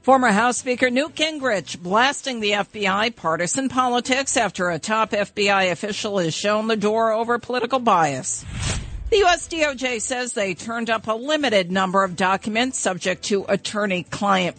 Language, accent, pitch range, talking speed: English, American, 190-255 Hz, 150 wpm